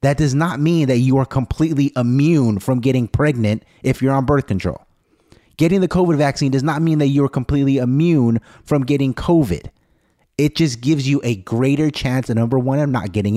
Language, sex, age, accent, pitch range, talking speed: English, male, 30-49, American, 110-150 Hz, 200 wpm